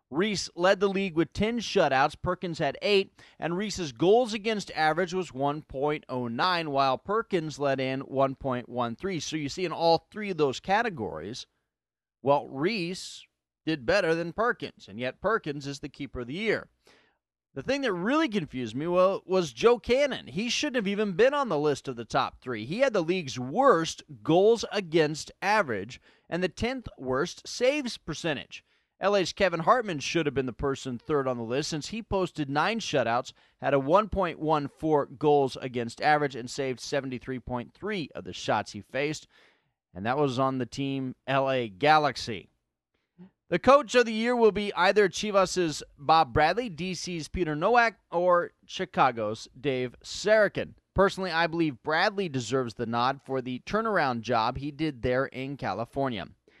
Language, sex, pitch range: English, male, 130-190 Hz